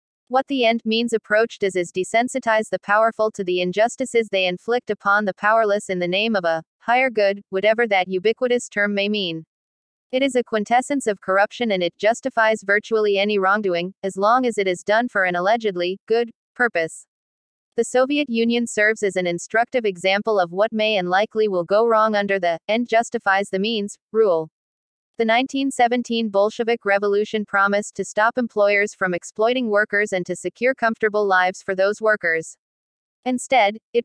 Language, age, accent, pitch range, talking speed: English, 40-59, American, 195-230 Hz, 170 wpm